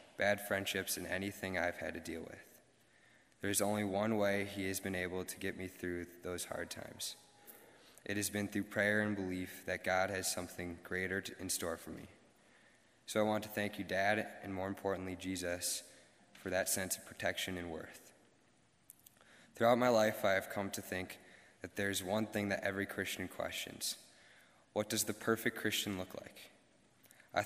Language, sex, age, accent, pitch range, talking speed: English, male, 20-39, American, 90-105 Hz, 185 wpm